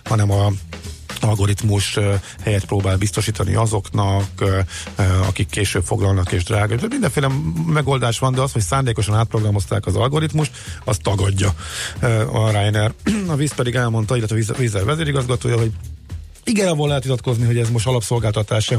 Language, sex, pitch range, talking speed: Hungarian, male, 100-125 Hz, 160 wpm